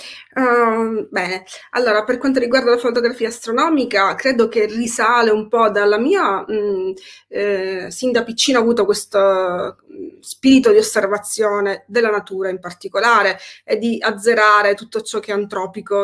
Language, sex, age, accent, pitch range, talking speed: Italian, female, 30-49, native, 200-235 Hz, 140 wpm